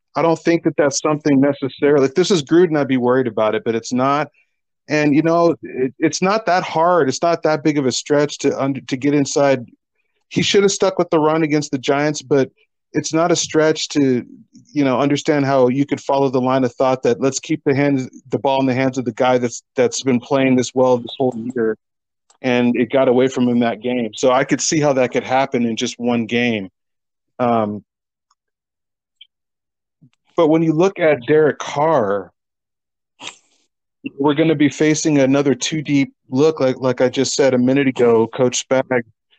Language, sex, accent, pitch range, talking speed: English, male, American, 125-155 Hz, 205 wpm